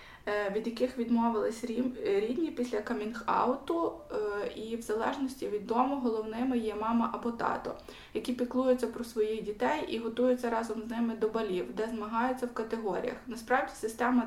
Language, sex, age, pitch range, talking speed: Ukrainian, female, 20-39, 220-250 Hz, 145 wpm